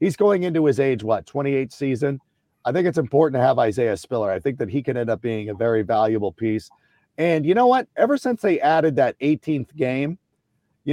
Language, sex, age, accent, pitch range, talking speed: English, male, 40-59, American, 120-155 Hz, 220 wpm